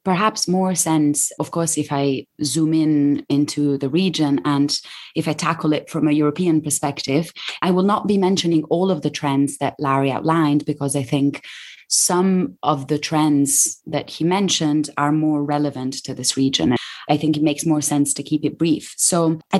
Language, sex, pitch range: English, female, 140-170 Hz